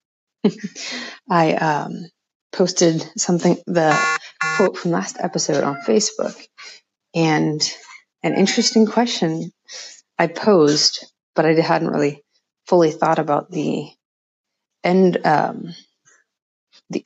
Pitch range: 160-195 Hz